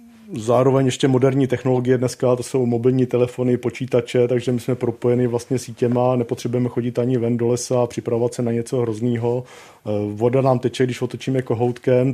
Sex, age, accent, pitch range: male, 40-59, native, 115-130 Hz